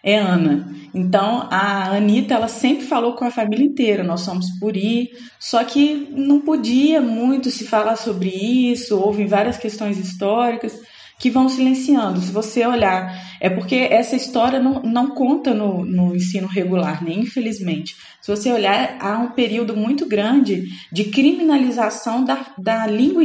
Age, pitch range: 20-39, 185-245 Hz